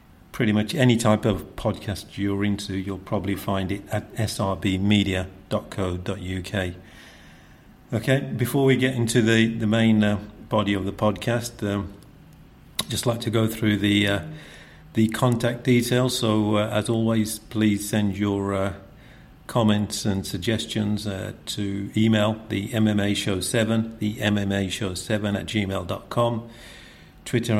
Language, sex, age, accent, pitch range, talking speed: English, male, 50-69, British, 95-110 Hz, 135 wpm